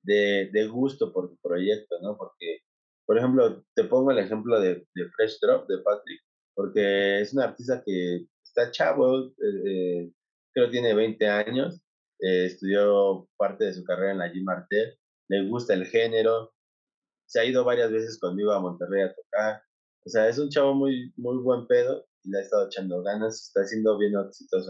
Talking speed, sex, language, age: 185 wpm, male, Spanish, 30-49